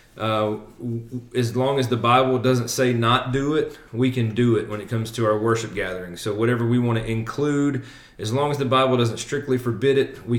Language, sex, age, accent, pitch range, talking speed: English, male, 30-49, American, 115-125 Hz, 220 wpm